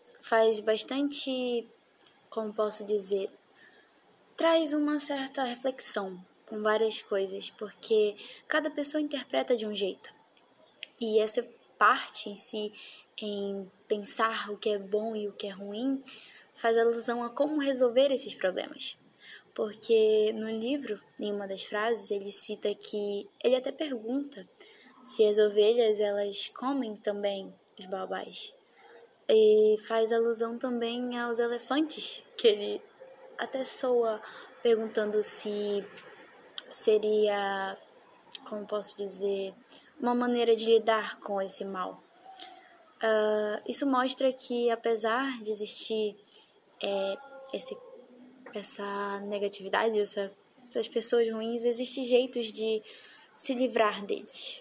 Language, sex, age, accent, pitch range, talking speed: Portuguese, female, 10-29, Brazilian, 210-265 Hz, 115 wpm